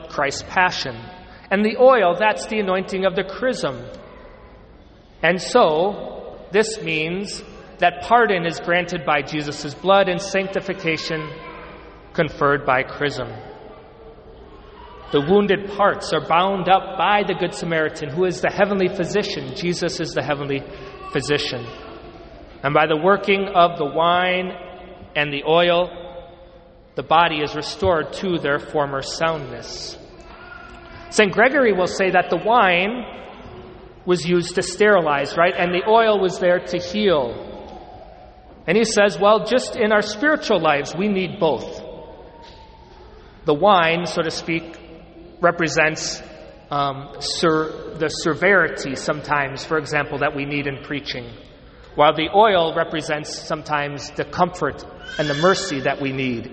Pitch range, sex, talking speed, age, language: 150-195 Hz, male, 135 wpm, 40-59, English